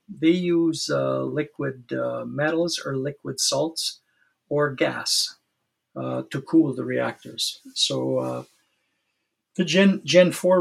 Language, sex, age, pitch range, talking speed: English, male, 50-69, 125-160 Hz, 125 wpm